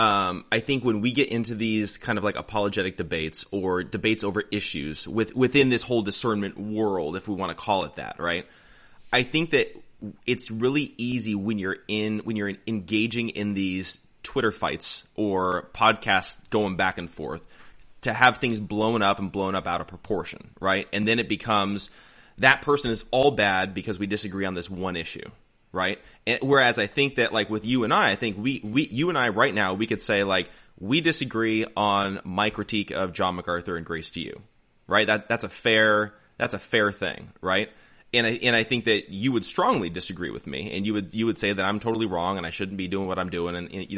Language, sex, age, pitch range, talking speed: English, male, 20-39, 95-115 Hz, 215 wpm